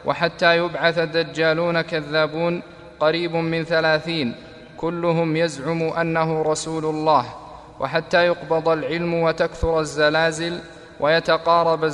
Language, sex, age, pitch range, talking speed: Arabic, male, 20-39, 160-170 Hz, 90 wpm